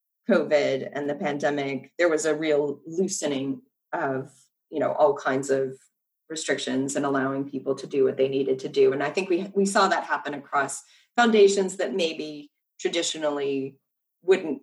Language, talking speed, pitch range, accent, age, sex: English, 165 wpm, 145-215 Hz, American, 30-49, female